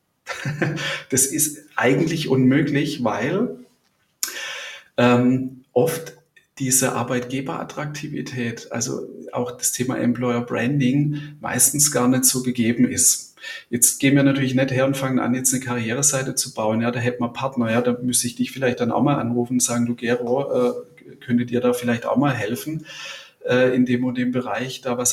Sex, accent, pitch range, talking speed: male, German, 120-140 Hz, 165 wpm